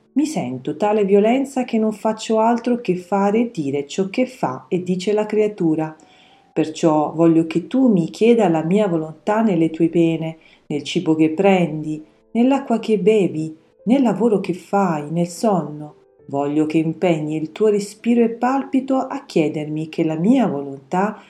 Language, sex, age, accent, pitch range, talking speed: Italian, female, 40-59, native, 160-210 Hz, 165 wpm